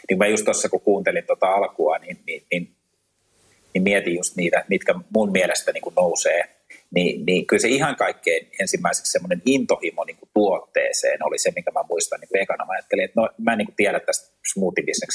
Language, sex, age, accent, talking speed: Finnish, male, 30-49, native, 190 wpm